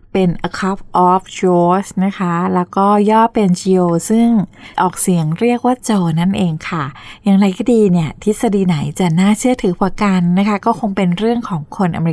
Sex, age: female, 20-39